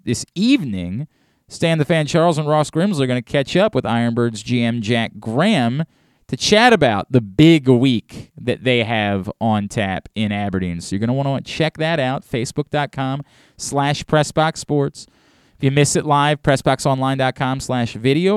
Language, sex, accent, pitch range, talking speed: English, male, American, 110-150 Hz, 155 wpm